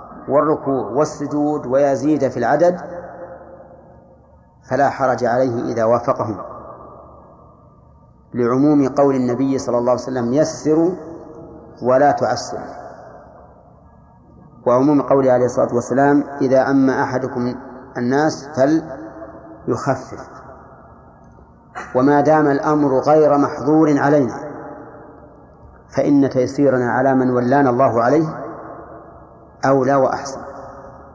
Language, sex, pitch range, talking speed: Arabic, male, 130-155 Hz, 90 wpm